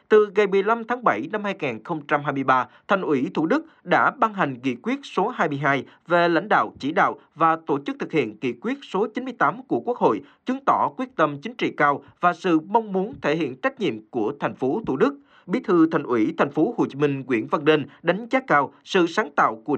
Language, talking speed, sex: Vietnamese, 225 wpm, male